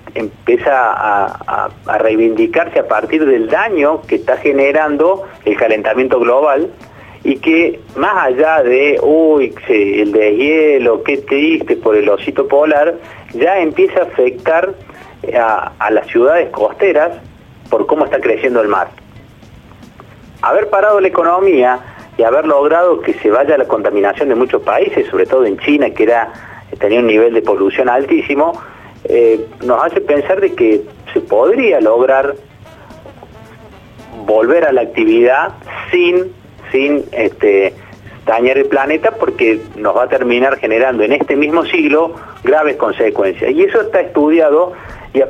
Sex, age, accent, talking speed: male, 40-59, Argentinian, 145 wpm